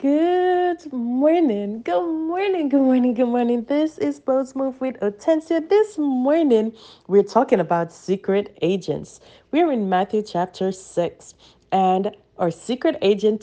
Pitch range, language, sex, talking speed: 190-285 Hz, English, female, 140 wpm